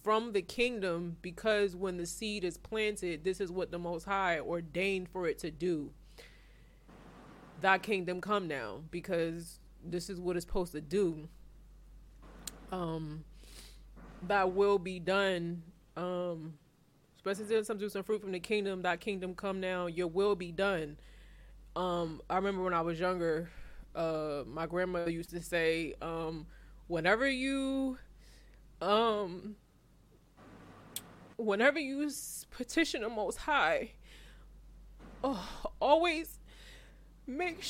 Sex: female